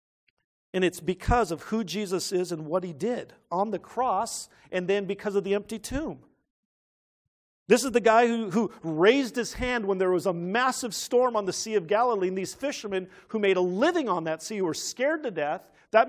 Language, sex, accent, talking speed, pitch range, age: English, male, American, 210 wpm, 170-230 Hz, 50-69